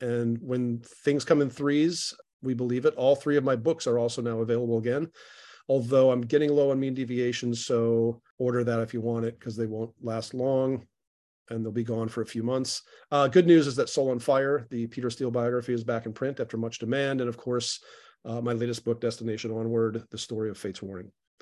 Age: 40-59